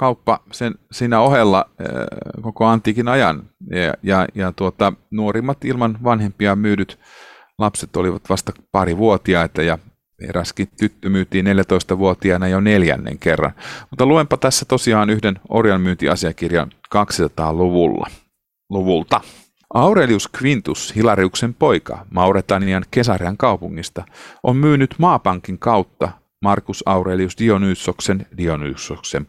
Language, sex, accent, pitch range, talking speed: Finnish, male, native, 85-110 Hz, 105 wpm